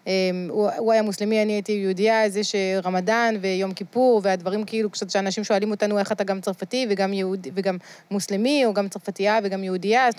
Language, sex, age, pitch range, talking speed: Hebrew, female, 20-39, 185-225 Hz, 165 wpm